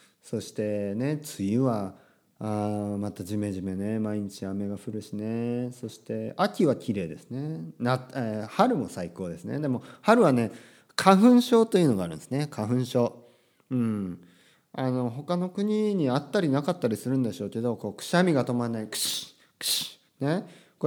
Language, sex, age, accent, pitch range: Japanese, male, 40-59, native, 110-170 Hz